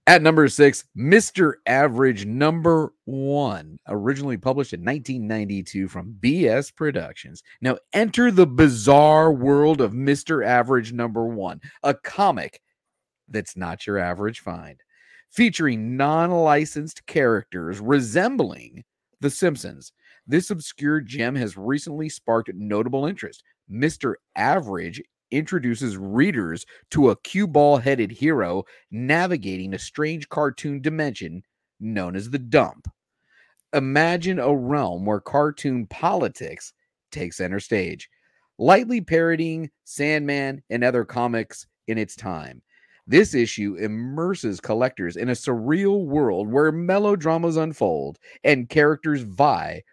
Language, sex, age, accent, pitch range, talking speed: English, male, 40-59, American, 110-155 Hz, 115 wpm